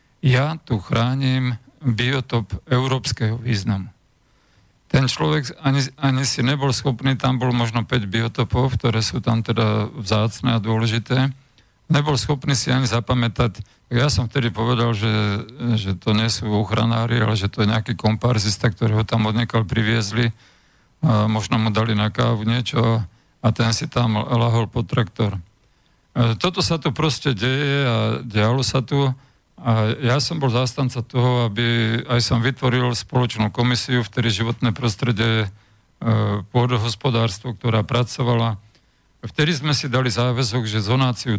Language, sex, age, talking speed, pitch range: Slovak, male, 50-69, 145 wpm, 110-130 Hz